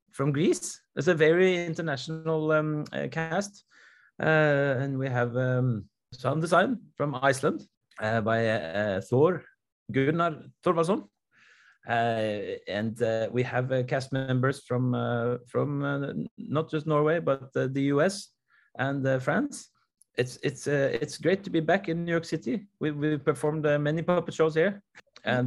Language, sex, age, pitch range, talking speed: English, male, 30-49, 135-170 Hz, 160 wpm